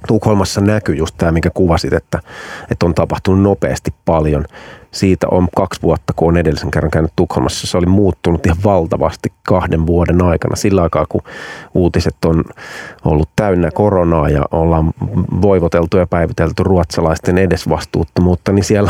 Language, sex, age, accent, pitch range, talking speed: Finnish, male, 30-49, native, 80-100 Hz, 150 wpm